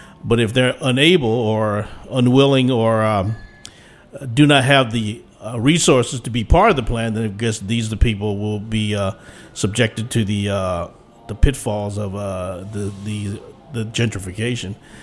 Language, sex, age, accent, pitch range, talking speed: English, male, 50-69, American, 105-125 Hz, 165 wpm